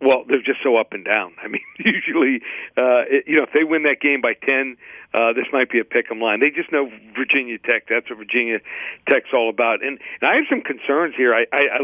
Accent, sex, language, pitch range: American, male, English, 120-140 Hz